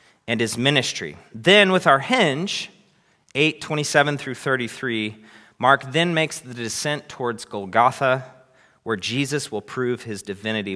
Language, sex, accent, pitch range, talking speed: English, male, American, 110-155 Hz, 135 wpm